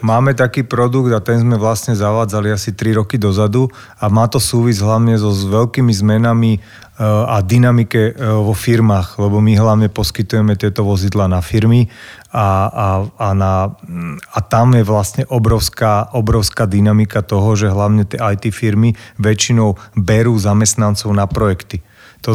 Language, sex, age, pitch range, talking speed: Slovak, male, 30-49, 95-110 Hz, 150 wpm